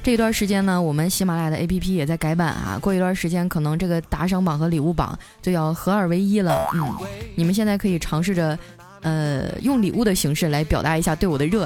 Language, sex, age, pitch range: Chinese, female, 20-39, 165-235 Hz